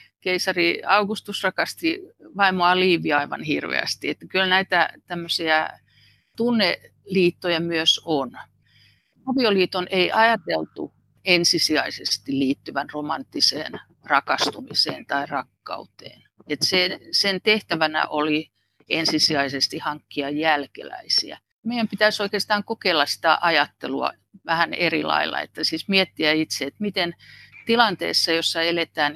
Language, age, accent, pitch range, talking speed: Finnish, 50-69, native, 150-195 Hz, 100 wpm